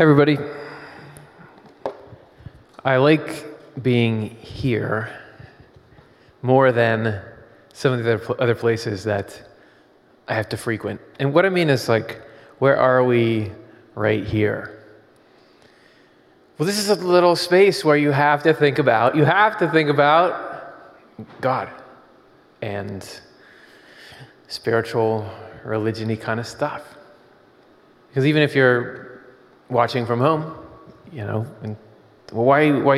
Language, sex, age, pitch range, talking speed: English, male, 20-39, 115-145 Hz, 115 wpm